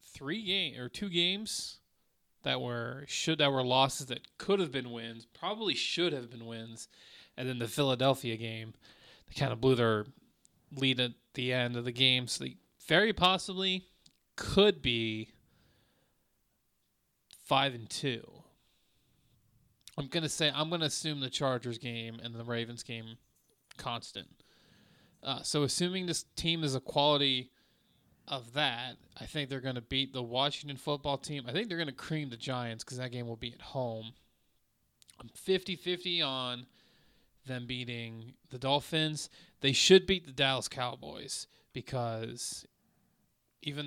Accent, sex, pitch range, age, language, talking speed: American, male, 120-145 Hz, 20-39, English, 150 wpm